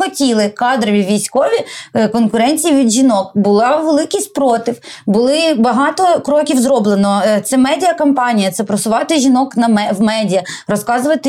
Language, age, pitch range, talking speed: Ukrainian, 20-39, 205-260 Hz, 115 wpm